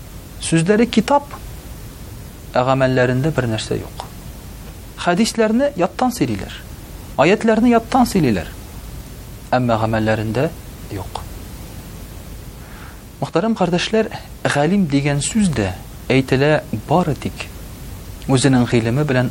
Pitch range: 110-150 Hz